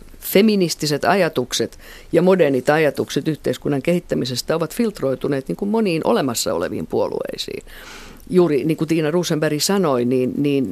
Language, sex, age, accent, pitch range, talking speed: Finnish, female, 50-69, native, 135-180 Hz, 125 wpm